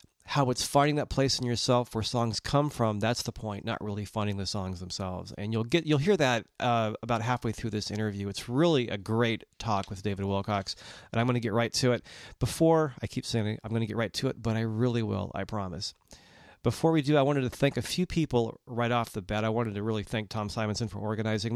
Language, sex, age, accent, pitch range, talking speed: English, male, 40-59, American, 105-125 Hz, 250 wpm